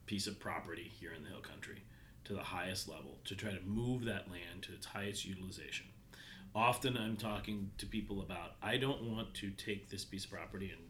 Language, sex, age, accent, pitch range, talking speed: English, male, 30-49, American, 95-115 Hz, 210 wpm